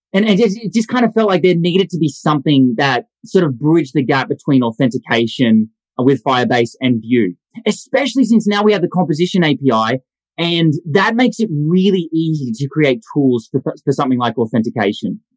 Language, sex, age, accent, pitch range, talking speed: English, male, 20-39, Australian, 120-180 Hz, 180 wpm